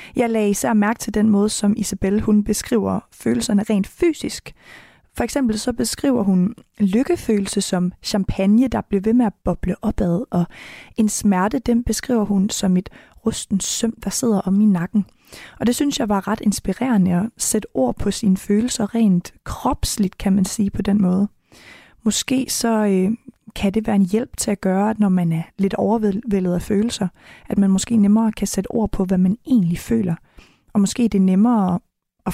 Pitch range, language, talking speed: 195-235 Hz, Danish, 190 wpm